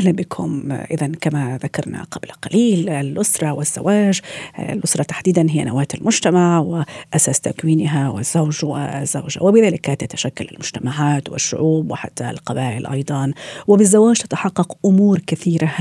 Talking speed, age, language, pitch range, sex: 110 wpm, 40-59, Arabic, 150-180 Hz, female